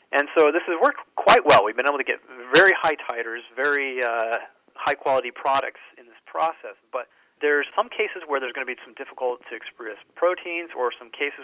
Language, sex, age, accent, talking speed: English, male, 40-59, American, 210 wpm